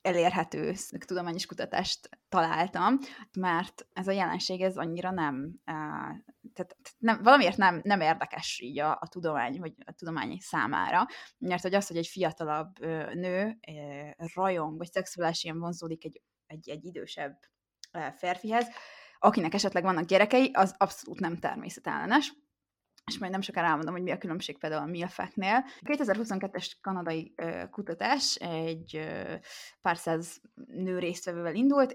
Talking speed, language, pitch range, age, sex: 135 wpm, Hungarian, 165-220 Hz, 20-39, female